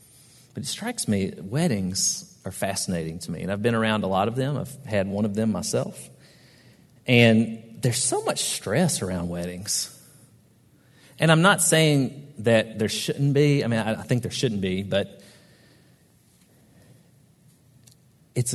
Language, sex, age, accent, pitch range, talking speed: English, male, 40-59, American, 110-140 Hz, 150 wpm